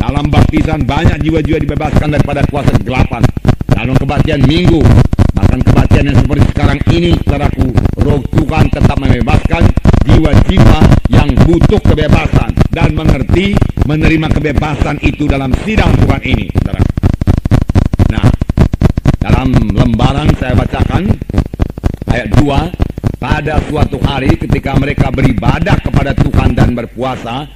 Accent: Indonesian